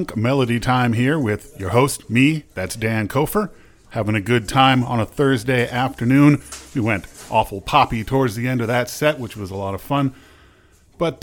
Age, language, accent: 40-59, English, American